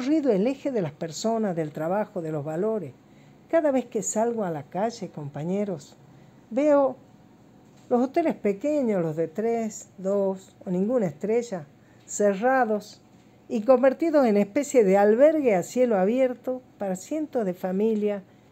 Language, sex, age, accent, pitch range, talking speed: Spanish, female, 50-69, American, 165-215 Hz, 145 wpm